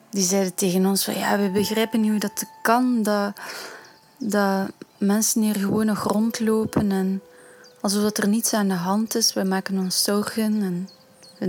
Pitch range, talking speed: 190-220 Hz, 180 wpm